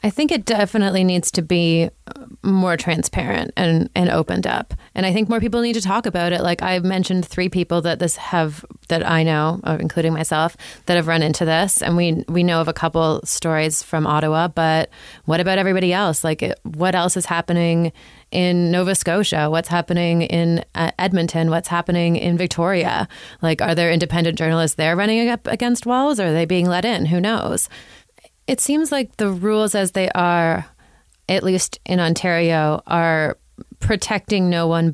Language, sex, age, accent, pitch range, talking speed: English, female, 30-49, American, 160-195 Hz, 185 wpm